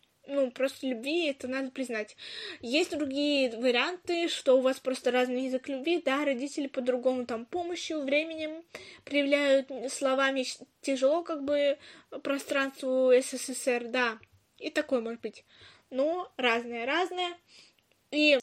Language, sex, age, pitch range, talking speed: Russian, female, 20-39, 255-305 Hz, 120 wpm